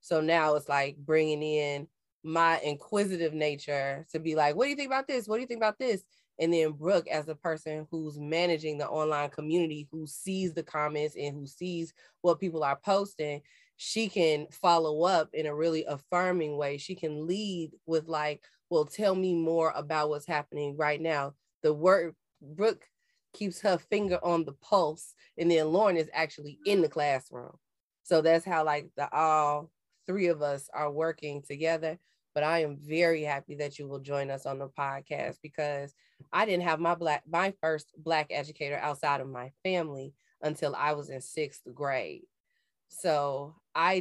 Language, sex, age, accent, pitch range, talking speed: English, female, 20-39, American, 145-165 Hz, 180 wpm